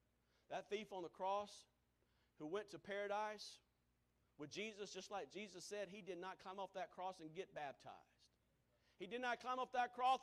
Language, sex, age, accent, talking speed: English, male, 40-59, American, 190 wpm